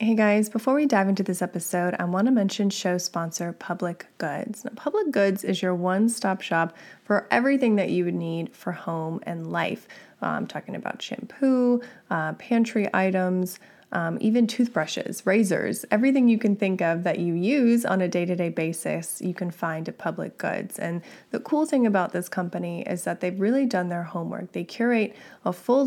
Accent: American